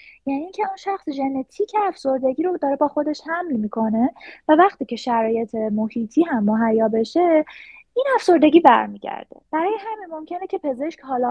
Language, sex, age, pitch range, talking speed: Persian, female, 20-39, 225-330 Hz, 160 wpm